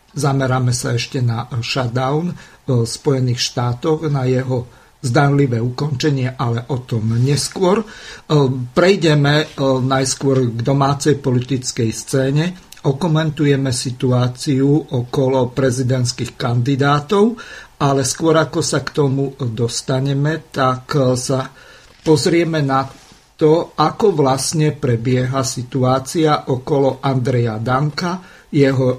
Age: 50-69